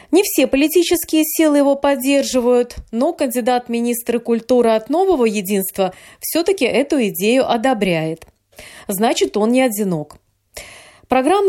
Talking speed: 115 wpm